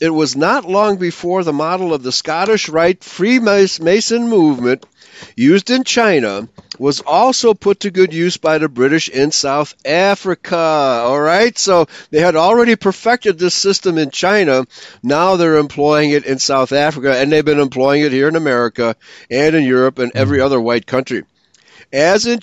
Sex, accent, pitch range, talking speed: male, American, 140-200 Hz, 170 wpm